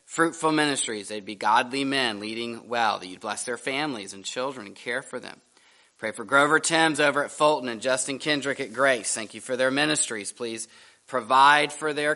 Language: English